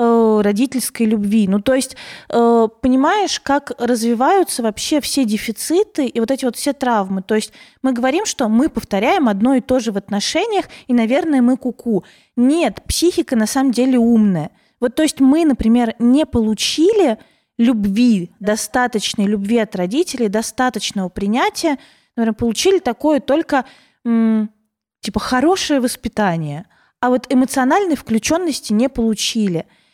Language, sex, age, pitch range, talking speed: Russian, female, 20-39, 220-275 Hz, 135 wpm